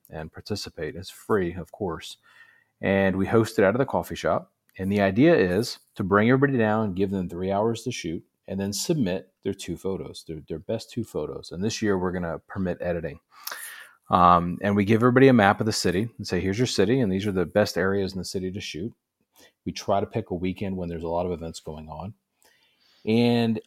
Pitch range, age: 90-115 Hz, 30-49